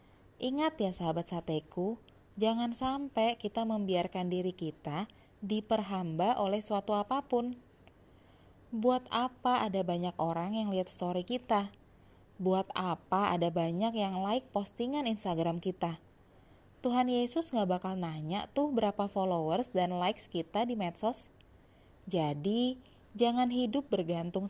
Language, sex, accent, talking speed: Indonesian, female, native, 120 wpm